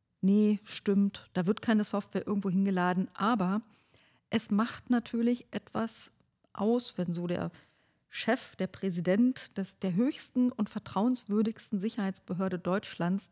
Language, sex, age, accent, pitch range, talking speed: German, female, 40-59, German, 180-220 Hz, 115 wpm